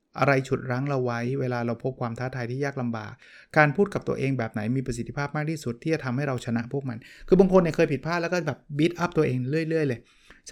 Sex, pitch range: male, 115-150 Hz